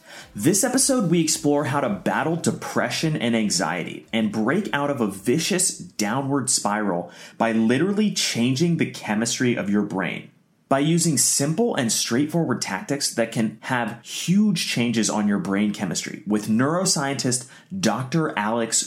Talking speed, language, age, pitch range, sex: 145 wpm, English, 30-49, 110-165 Hz, male